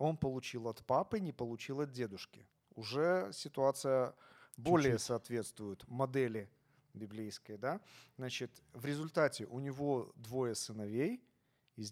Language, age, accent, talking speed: Ukrainian, 40-59, native, 115 wpm